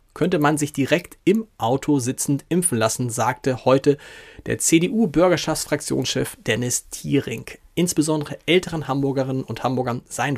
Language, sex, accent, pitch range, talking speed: German, male, German, 130-175 Hz, 120 wpm